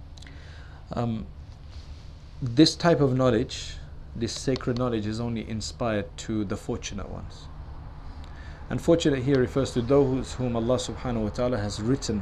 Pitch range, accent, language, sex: 80-125 Hz, South African, English, male